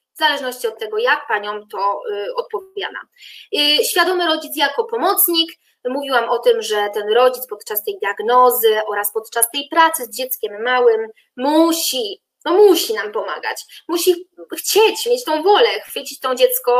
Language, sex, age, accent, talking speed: Polish, female, 20-39, native, 155 wpm